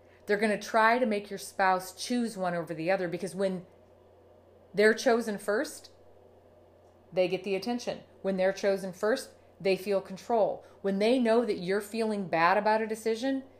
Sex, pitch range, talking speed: female, 185-230 Hz, 170 wpm